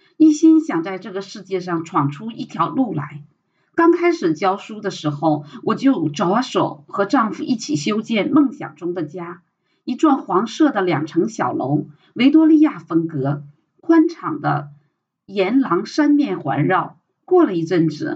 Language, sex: Chinese, female